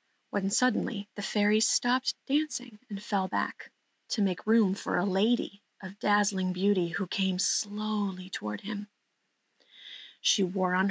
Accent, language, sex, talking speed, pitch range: American, English, female, 145 wpm, 190-225 Hz